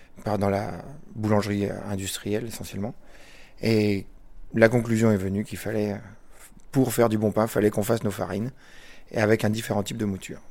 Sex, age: male, 30-49